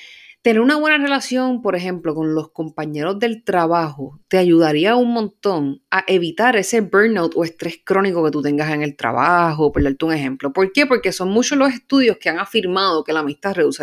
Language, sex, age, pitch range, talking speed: Spanish, female, 30-49, 170-250 Hz, 200 wpm